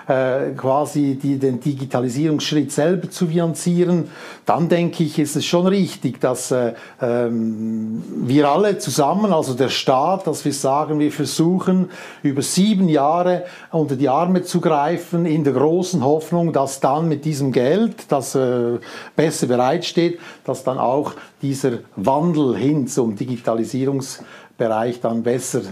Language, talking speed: German, 130 wpm